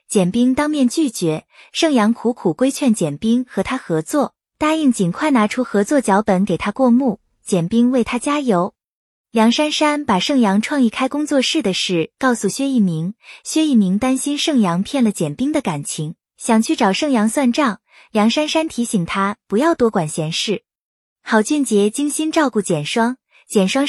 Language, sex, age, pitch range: Chinese, female, 20-39, 200-280 Hz